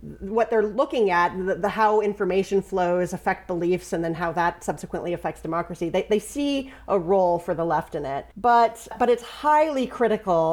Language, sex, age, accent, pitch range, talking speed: English, female, 30-49, American, 175-215 Hz, 190 wpm